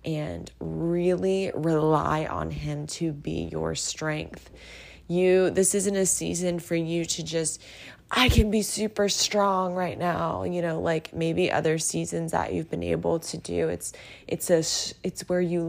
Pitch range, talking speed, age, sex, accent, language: 145-180 Hz, 165 wpm, 20-39, female, American, English